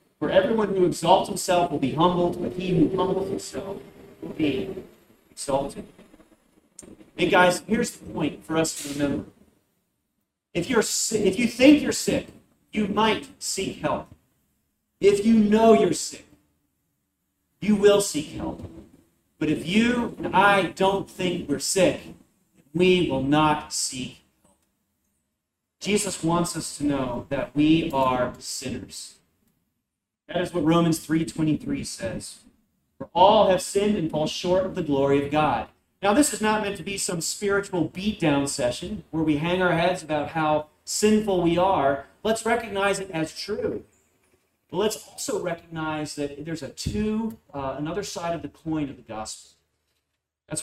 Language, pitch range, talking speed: English, 150-200 Hz, 155 wpm